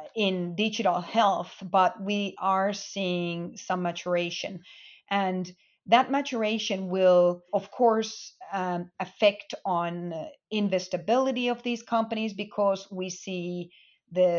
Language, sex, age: English, female, 40-59